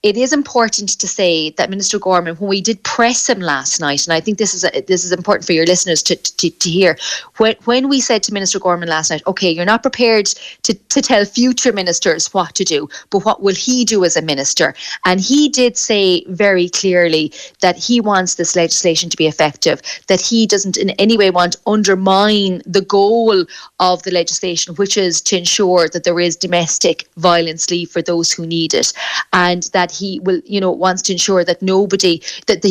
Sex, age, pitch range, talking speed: female, 30-49, 175-215 Hz, 215 wpm